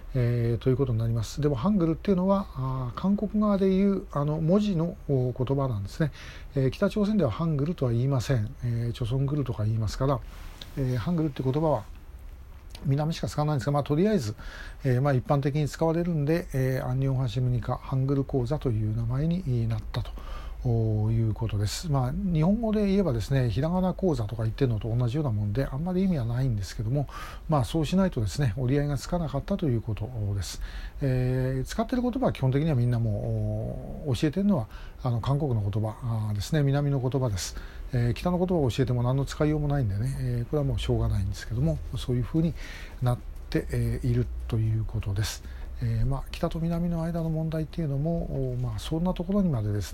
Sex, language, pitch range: male, Japanese, 115-150 Hz